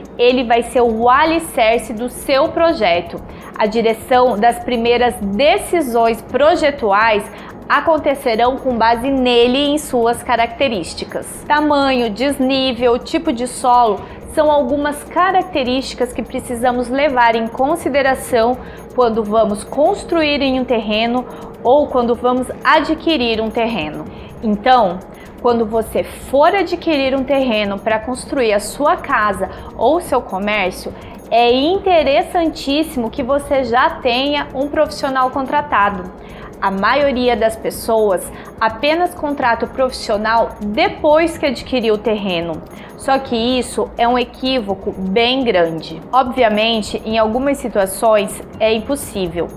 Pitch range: 225-280 Hz